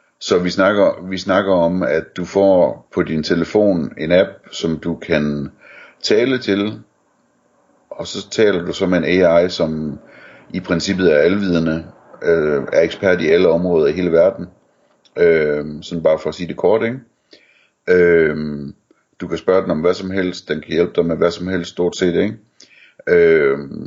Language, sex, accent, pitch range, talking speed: Danish, male, native, 80-95 Hz, 180 wpm